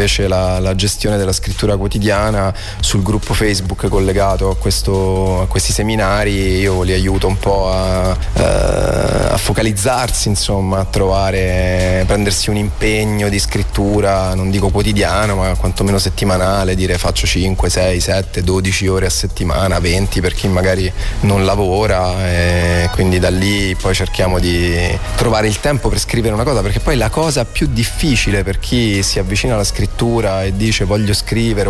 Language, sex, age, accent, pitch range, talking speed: Italian, male, 30-49, native, 95-105 Hz, 155 wpm